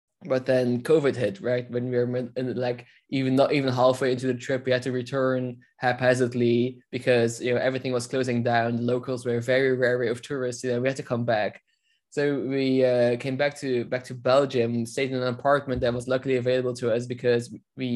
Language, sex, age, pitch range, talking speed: English, male, 20-39, 120-130 Hz, 215 wpm